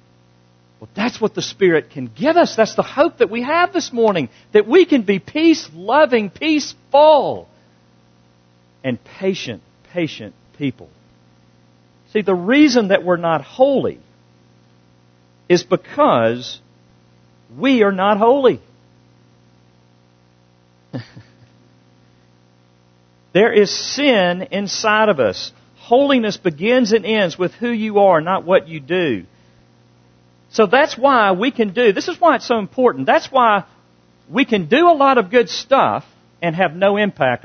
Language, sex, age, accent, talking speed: English, male, 50-69, American, 135 wpm